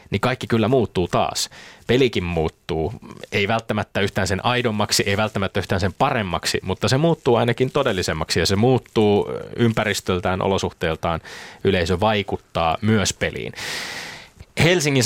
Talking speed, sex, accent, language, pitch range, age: 130 wpm, male, native, Finnish, 95-115 Hz, 20-39